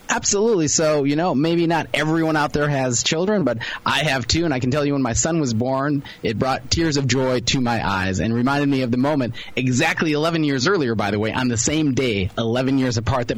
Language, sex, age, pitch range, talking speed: English, male, 30-49, 105-140 Hz, 240 wpm